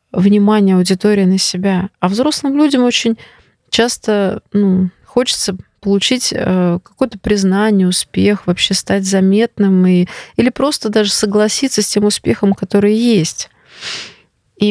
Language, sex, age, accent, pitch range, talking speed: Russian, female, 20-39, native, 195-220 Hz, 120 wpm